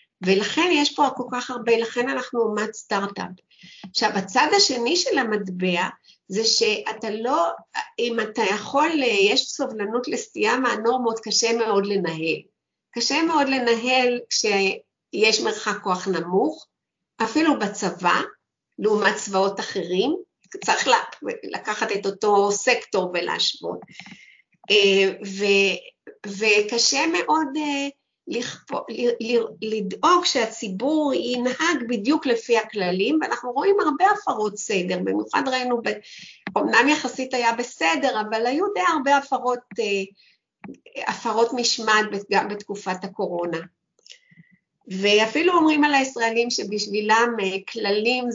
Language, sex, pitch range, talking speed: Hebrew, female, 200-280 Hz, 110 wpm